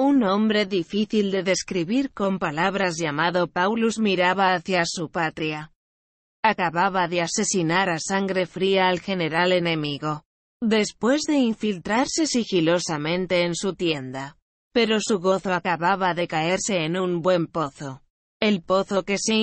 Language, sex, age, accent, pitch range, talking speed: Spanish, female, 20-39, Spanish, 170-200 Hz, 135 wpm